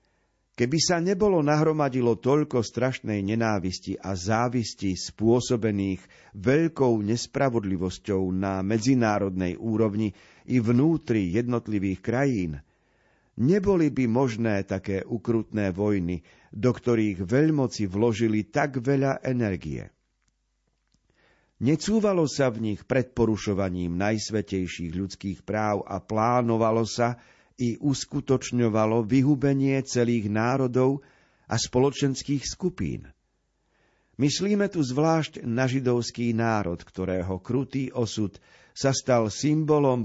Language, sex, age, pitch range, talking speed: Slovak, male, 50-69, 105-135 Hz, 95 wpm